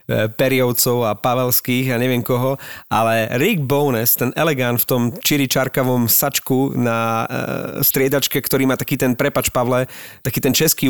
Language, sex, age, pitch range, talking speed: Slovak, male, 30-49, 125-145 Hz, 150 wpm